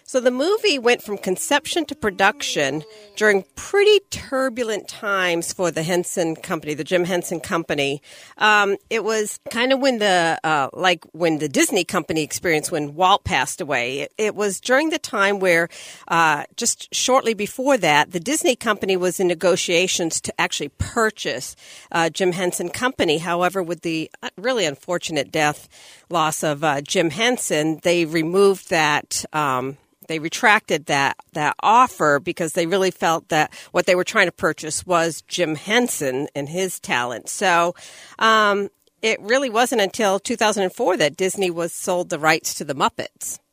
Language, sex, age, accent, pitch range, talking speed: English, female, 50-69, American, 165-220 Hz, 160 wpm